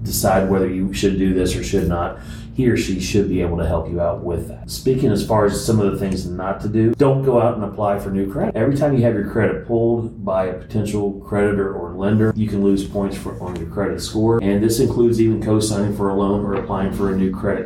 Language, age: English, 30-49